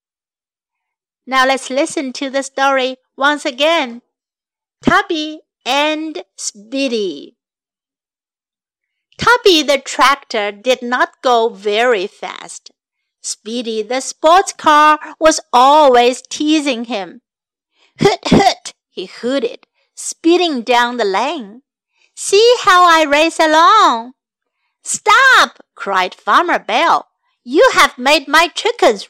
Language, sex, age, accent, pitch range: Chinese, female, 50-69, American, 250-340 Hz